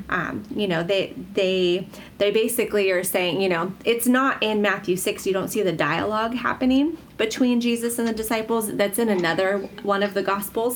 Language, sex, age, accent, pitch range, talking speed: English, female, 30-49, American, 190-225 Hz, 190 wpm